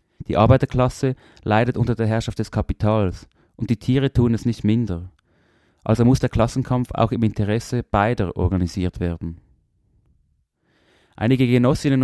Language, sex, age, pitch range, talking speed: German, male, 30-49, 100-125 Hz, 135 wpm